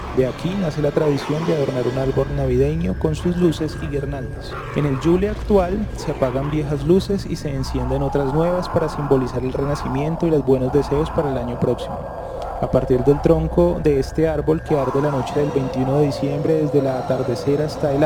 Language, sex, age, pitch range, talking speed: English, male, 20-39, 135-155 Hz, 200 wpm